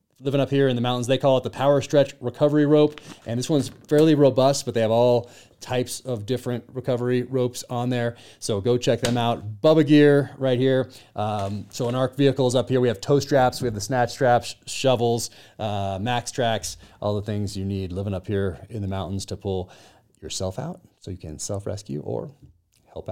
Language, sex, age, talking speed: English, male, 30-49, 210 wpm